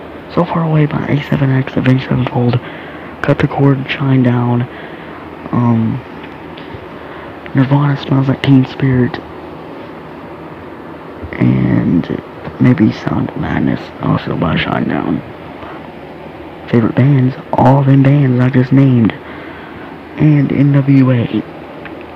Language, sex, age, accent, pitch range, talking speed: English, male, 30-49, American, 120-140 Hz, 100 wpm